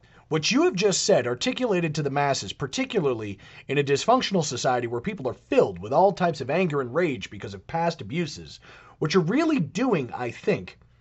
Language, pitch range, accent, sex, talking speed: English, 135-205 Hz, American, male, 190 wpm